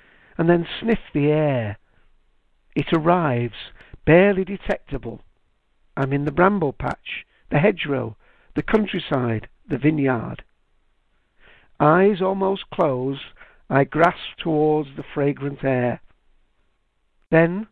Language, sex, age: English, male, 60-79